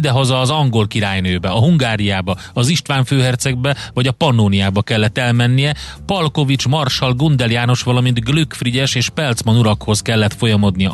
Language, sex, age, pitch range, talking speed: Hungarian, male, 30-49, 105-125 Hz, 135 wpm